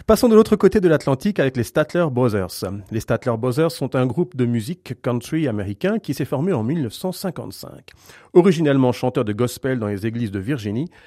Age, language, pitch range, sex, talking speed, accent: 40-59, French, 115-170 Hz, male, 185 wpm, French